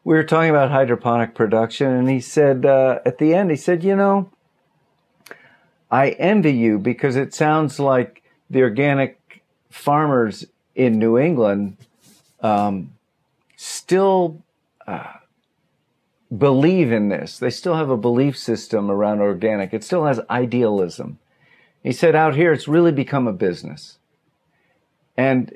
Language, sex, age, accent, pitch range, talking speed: English, male, 50-69, American, 110-155 Hz, 135 wpm